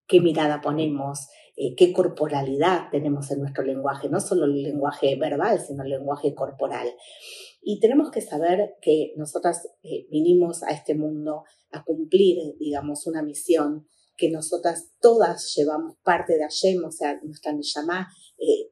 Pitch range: 155-205 Hz